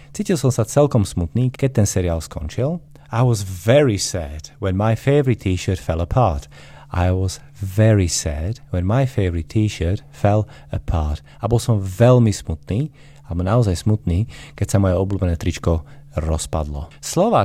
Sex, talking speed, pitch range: male, 150 wpm, 90-125 Hz